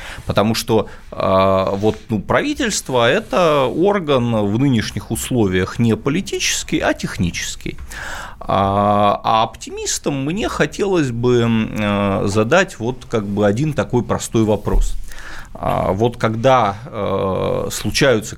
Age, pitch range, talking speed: 20-39, 100-130 Hz, 80 wpm